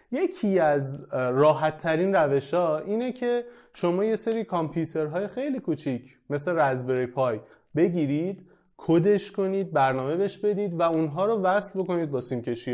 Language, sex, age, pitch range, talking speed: Persian, male, 30-49, 135-190 Hz, 135 wpm